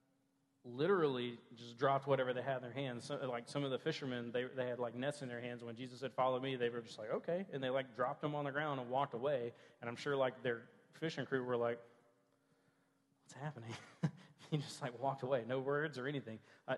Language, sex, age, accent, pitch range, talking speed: English, male, 40-59, American, 120-140 Hz, 235 wpm